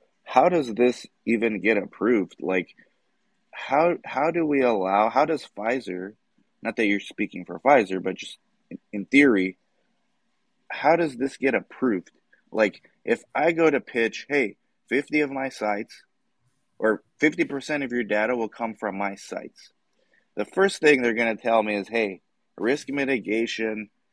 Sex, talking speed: male, 160 wpm